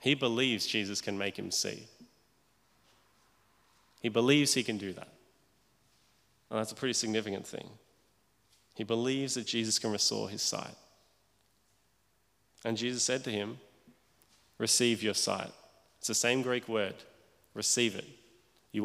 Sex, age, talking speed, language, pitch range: male, 30-49, 135 wpm, English, 105-125 Hz